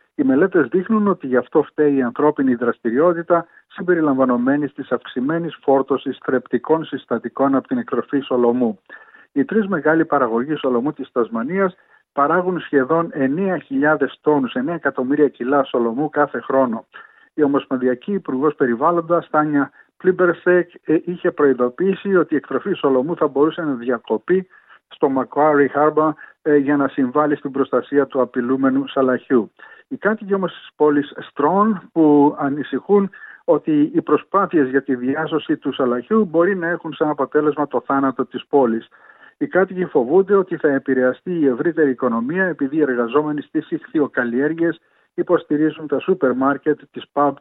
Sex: male